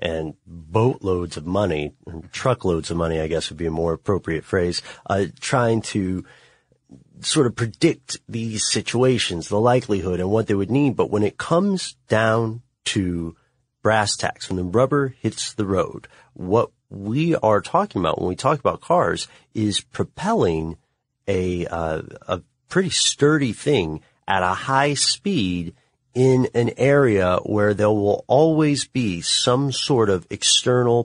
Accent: American